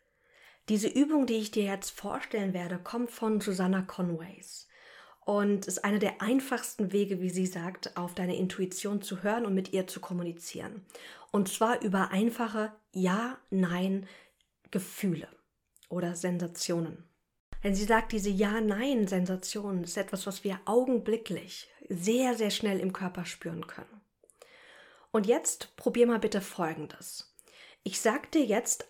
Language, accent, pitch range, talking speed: German, German, 185-225 Hz, 135 wpm